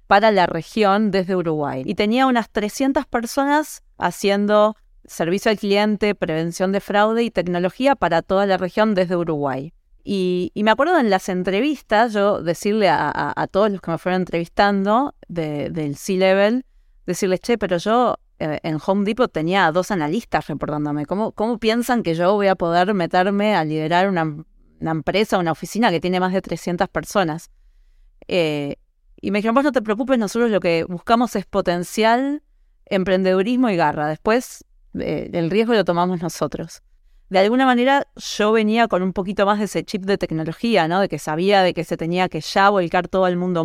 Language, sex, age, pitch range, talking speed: Spanish, female, 30-49, 170-215 Hz, 180 wpm